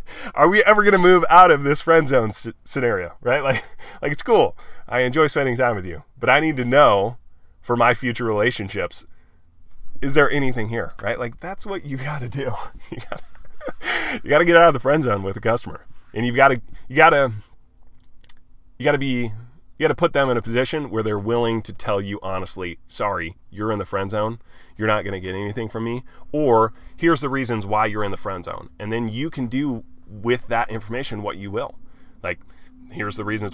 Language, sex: English, male